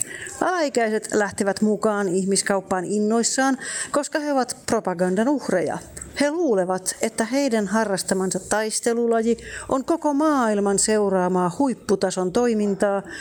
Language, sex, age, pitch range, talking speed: Finnish, female, 40-59, 195-250 Hz, 100 wpm